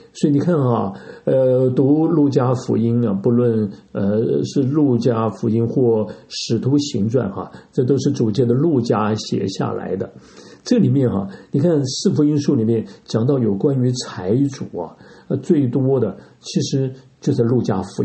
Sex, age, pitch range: male, 60-79, 120-160 Hz